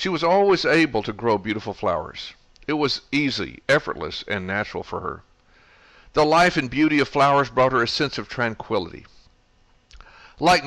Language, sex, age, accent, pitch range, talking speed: English, male, 60-79, American, 115-155 Hz, 165 wpm